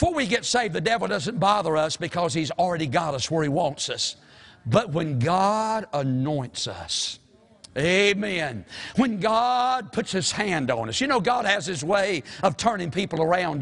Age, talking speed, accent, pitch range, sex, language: 60-79, 180 wpm, American, 205-285 Hz, male, English